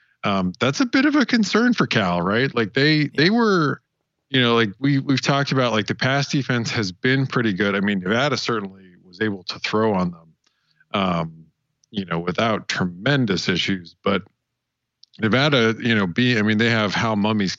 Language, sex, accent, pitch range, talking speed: English, male, American, 100-140 Hz, 190 wpm